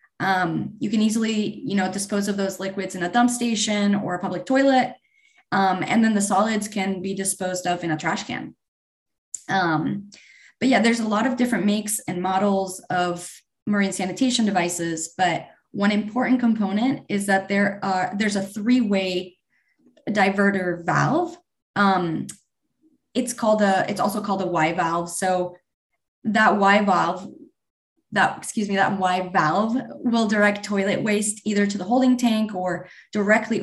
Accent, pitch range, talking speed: American, 190-240 Hz, 155 wpm